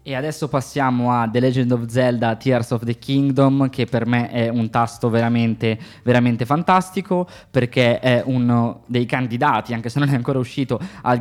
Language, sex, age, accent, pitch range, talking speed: Italian, male, 20-39, native, 115-130 Hz, 175 wpm